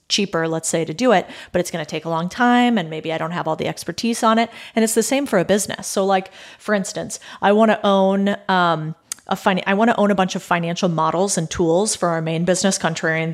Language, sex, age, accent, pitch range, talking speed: English, female, 30-49, American, 165-200 Hz, 260 wpm